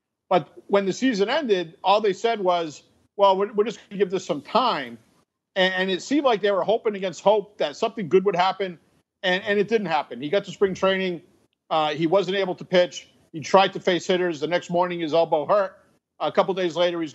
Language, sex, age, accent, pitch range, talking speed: English, male, 50-69, American, 170-205 Hz, 230 wpm